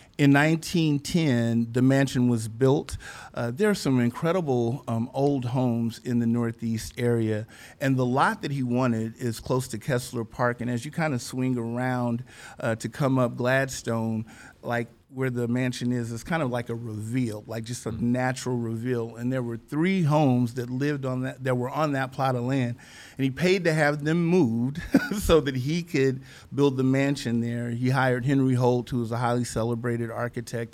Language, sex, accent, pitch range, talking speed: English, male, American, 120-135 Hz, 190 wpm